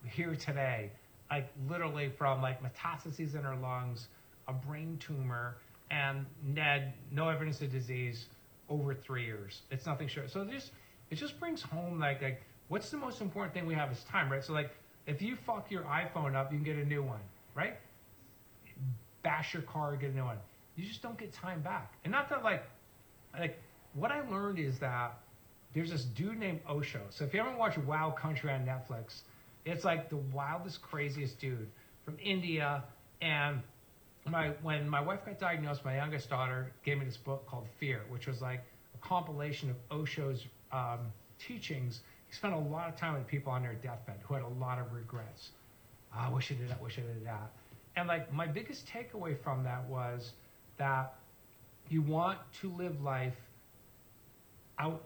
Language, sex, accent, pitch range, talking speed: English, male, American, 120-160 Hz, 185 wpm